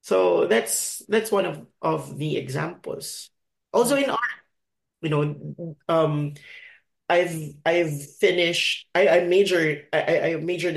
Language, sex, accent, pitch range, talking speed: English, male, Filipino, 145-175 Hz, 130 wpm